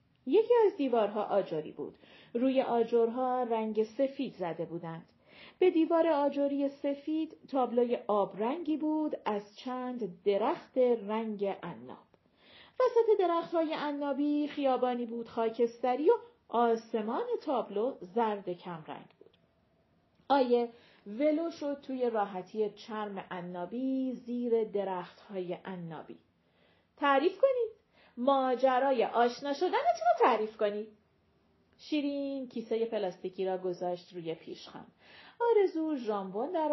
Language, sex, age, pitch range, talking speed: Persian, female, 40-59, 200-280 Hz, 105 wpm